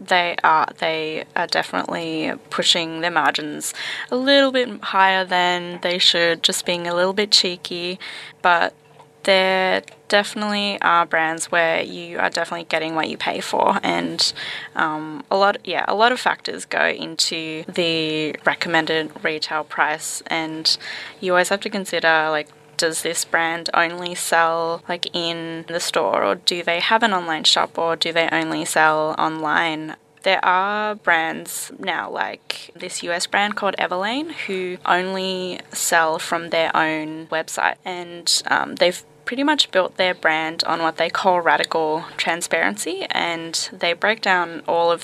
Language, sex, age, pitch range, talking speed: English, female, 10-29, 160-185 Hz, 155 wpm